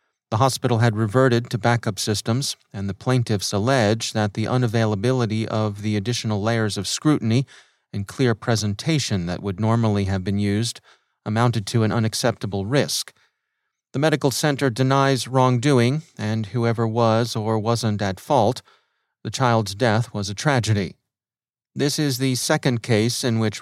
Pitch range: 105-125 Hz